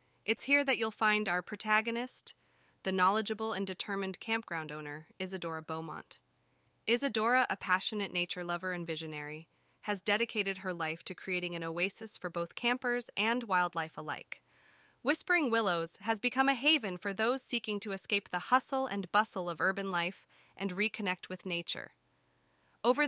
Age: 20-39